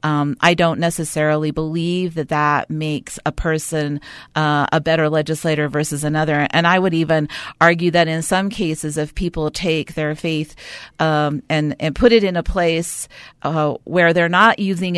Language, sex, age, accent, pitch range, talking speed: English, female, 40-59, American, 150-175 Hz, 170 wpm